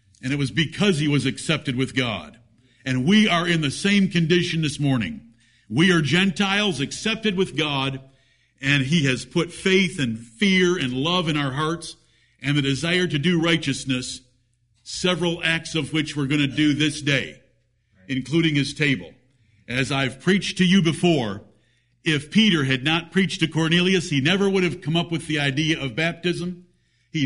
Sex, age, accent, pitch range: male, 50-69, American, 125-170 Hz